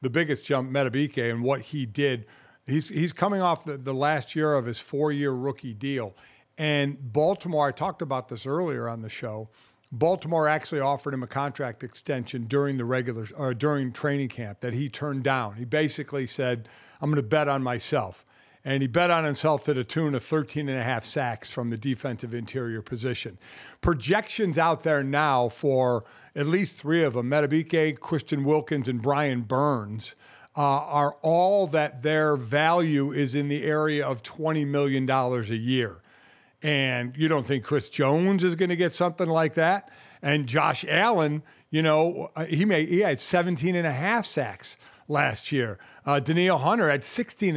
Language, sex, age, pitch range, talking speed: English, male, 50-69, 130-160 Hz, 180 wpm